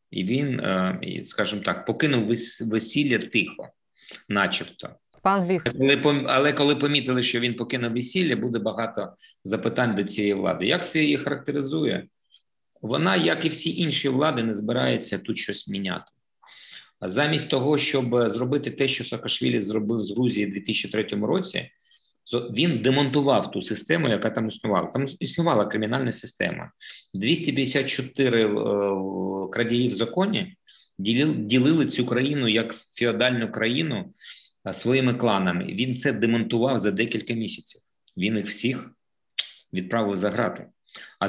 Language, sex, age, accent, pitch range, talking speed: Ukrainian, male, 50-69, native, 110-140 Hz, 125 wpm